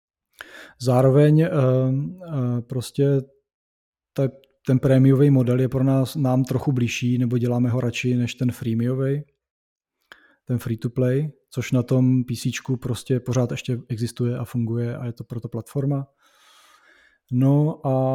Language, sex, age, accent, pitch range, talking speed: Czech, male, 20-39, native, 125-140 Hz, 130 wpm